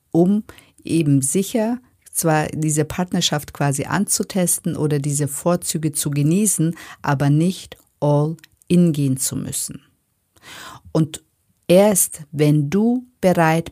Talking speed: 105 wpm